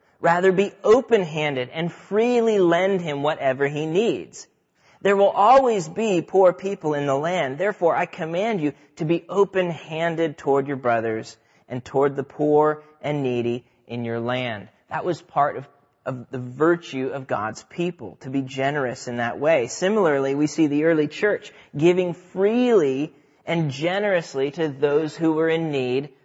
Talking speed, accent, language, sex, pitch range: 160 wpm, American, English, male, 140-180 Hz